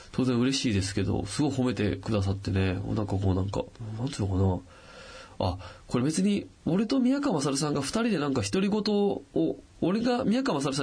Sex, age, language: male, 20-39, Japanese